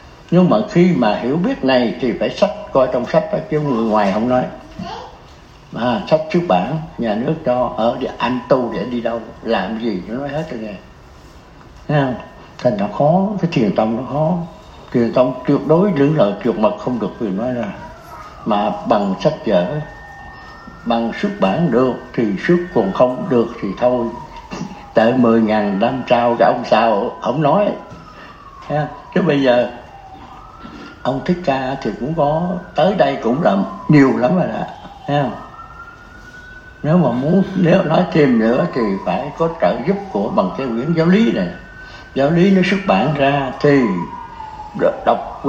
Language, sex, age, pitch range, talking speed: Vietnamese, male, 60-79, 120-175 Hz, 175 wpm